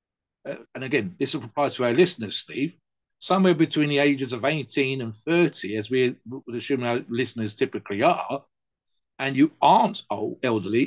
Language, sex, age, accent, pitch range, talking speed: English, male, 50-69, British, 115-165 Hz, 170 wpm